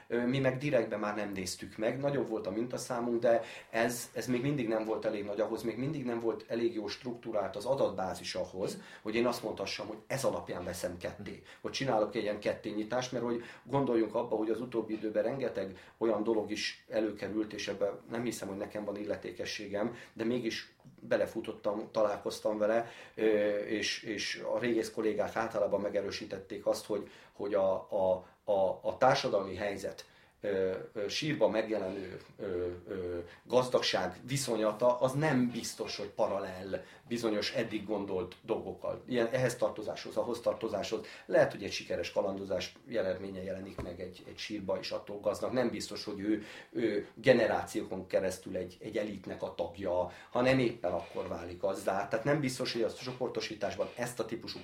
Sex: male